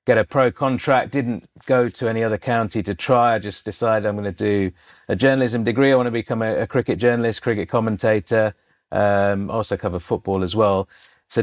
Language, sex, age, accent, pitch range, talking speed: English, male, 30-49, British, 105-120 Hz, 205 wpm